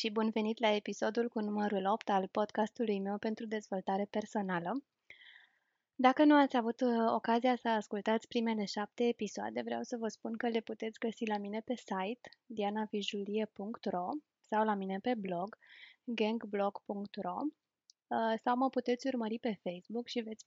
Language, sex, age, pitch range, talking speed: Romanian, female, 20-39, 210-245 Hz, 150 wpm